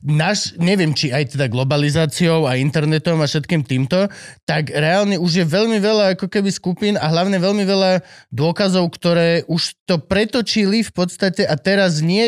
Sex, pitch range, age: male, 150-195 Hz, 20-39